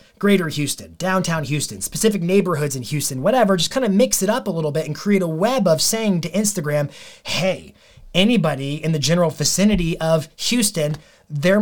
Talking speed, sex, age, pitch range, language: 180 wpm, male, 30-49, 150-195 Hz, English